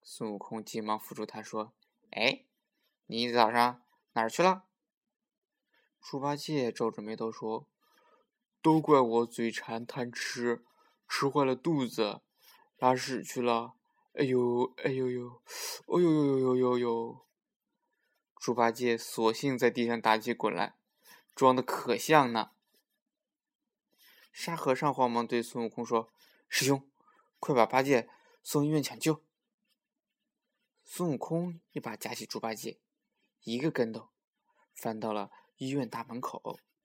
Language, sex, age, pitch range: Chinese, male, 20-39, 115-155 Hz